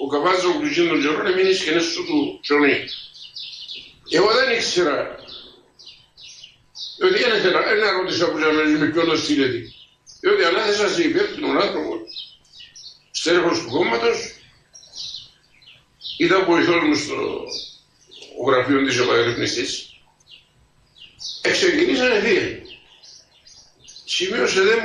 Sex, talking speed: male, 100 wpm